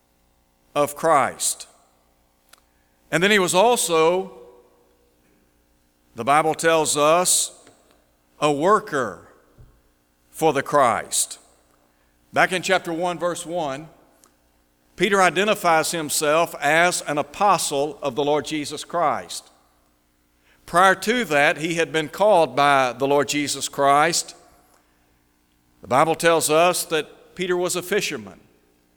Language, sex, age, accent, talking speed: English, male, 60-79, American, 110 wpm